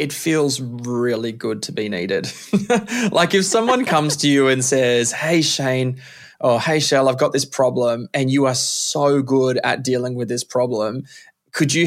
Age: 20-39